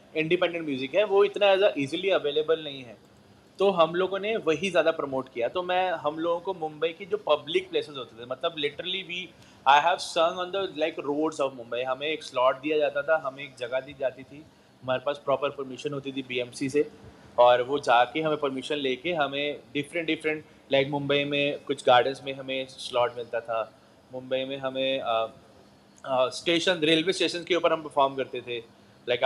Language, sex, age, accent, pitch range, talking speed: English, male, 30-49, Indian, 130-175 Hz, 115 wpm